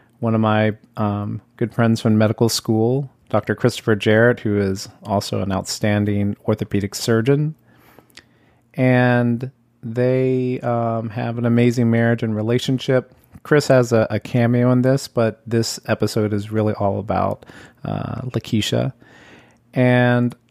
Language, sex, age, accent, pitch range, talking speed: English, male, 30-49, American, 110-125 Hz, 130 wpm